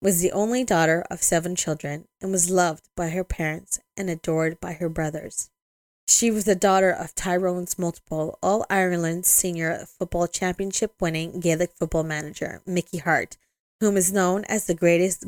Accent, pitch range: American, 165-195 Hz